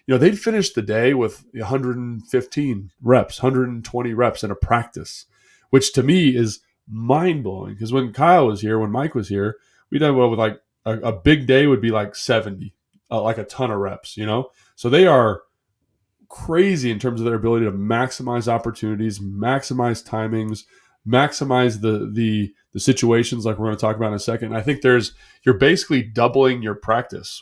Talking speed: 185 wpm